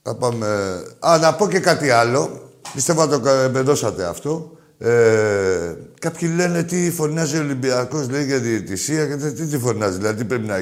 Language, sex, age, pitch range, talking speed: Greek, male, 50-69, 120-155 Hz, 170 wpm